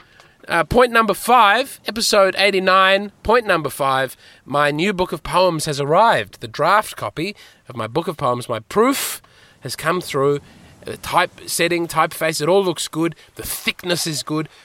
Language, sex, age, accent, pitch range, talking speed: English, male, 20-39, Australian, 135-180 Hz, 170 wpm